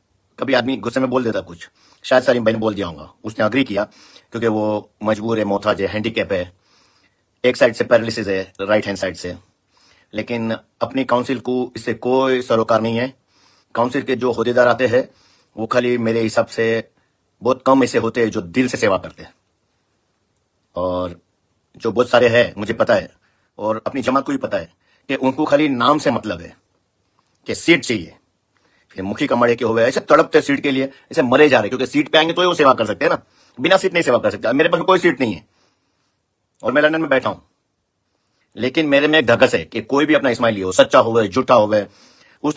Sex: male